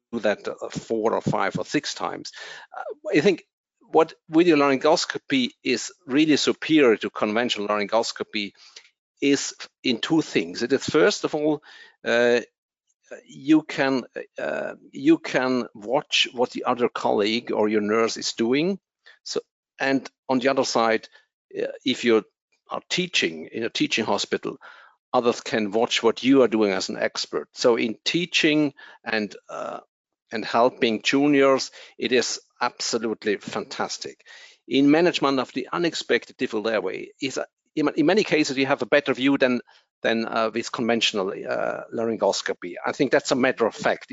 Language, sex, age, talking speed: English, male, 50-69, 145 wpm